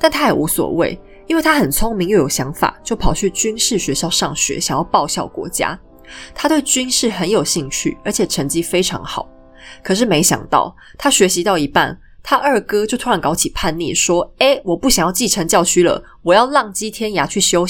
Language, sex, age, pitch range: Chinese, female, 20-39, 165-235 Hz